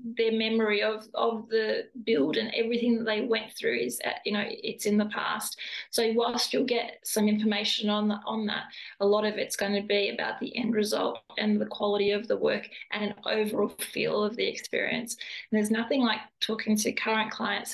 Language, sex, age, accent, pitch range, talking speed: English, female, 20-39, Australian, 205-230 Hz, 205 wpm